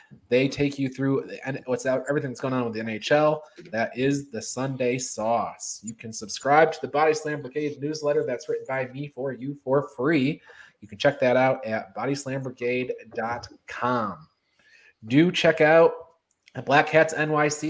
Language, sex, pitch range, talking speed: English, male, 130-150 Hz, 165 wpm